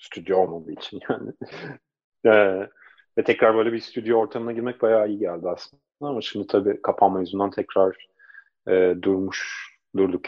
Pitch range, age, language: 95-120 Hz, 30-49, Turkish